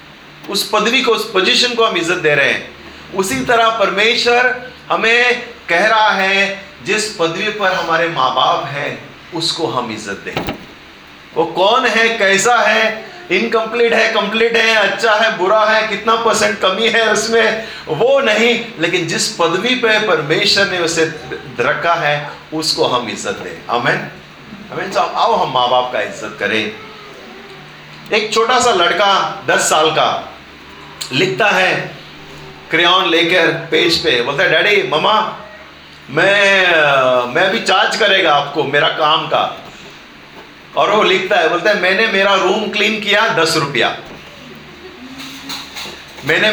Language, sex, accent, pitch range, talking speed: Hindi, male, native, 175-225 Hz, 140 wpm